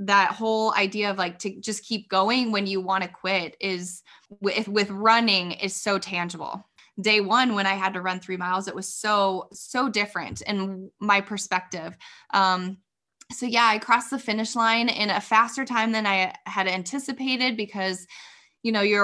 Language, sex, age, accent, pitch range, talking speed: English, female, 20-39, American, 190-225 Hz, 185 wpm